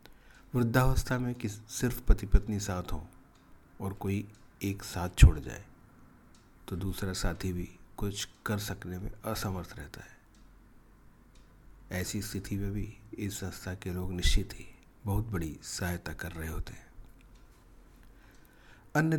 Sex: male